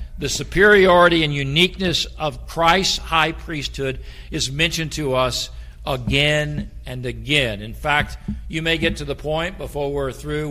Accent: American